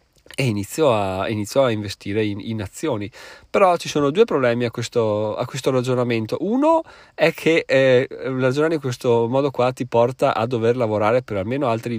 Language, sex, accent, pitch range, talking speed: Italian, male, native, 110-130 Hz, 170 wpm